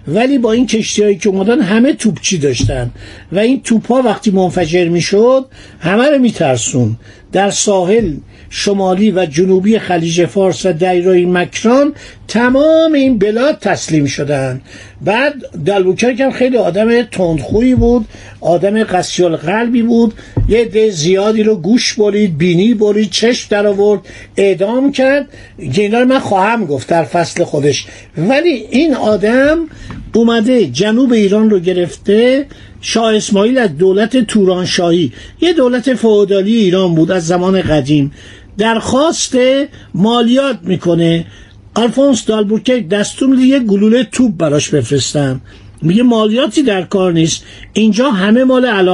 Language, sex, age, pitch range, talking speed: Persian, male, 50-69, 170-230 Hz, 130 wpm